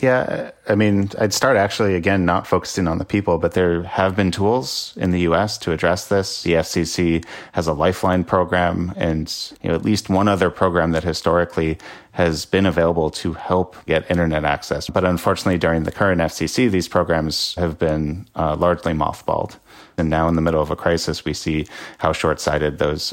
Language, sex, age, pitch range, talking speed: English, male, 30-49, 80-95 Hz, 185 wpm